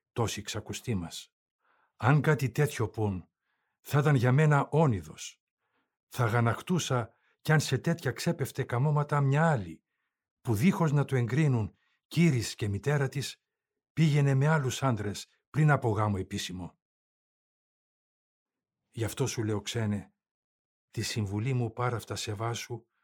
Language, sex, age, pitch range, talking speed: Greek, male, 50-69, 100-130 Hz, 130 wpm